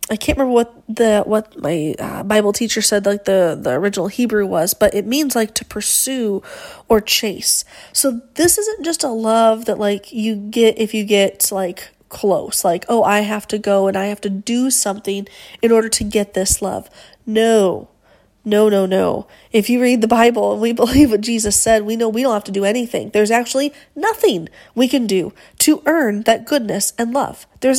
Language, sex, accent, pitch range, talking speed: English, female, American, 220-280 Hz, 205 wpm